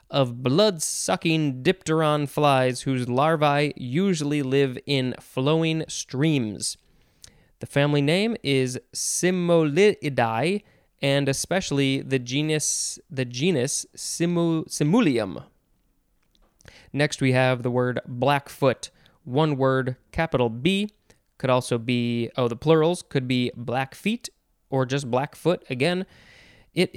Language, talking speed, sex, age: English, 110 wpm, male, 20-39